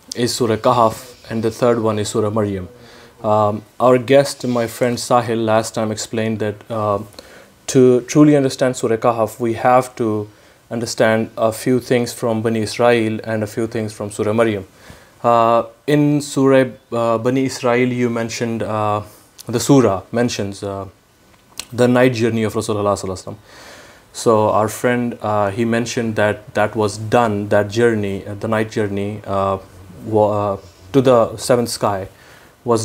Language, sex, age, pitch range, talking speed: Urdu, male, 20-39, 105-120 Hz, 150 wpm